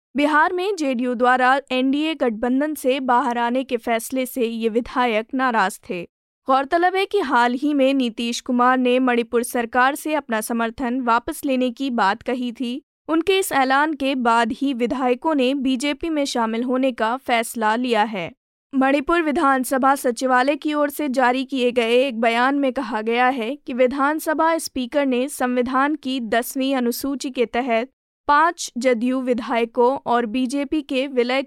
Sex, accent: female, native